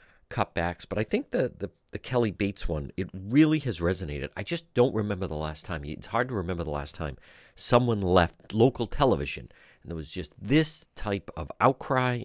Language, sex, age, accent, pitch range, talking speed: English, male, 50-69, American, 90-130 Hz, 195 wpm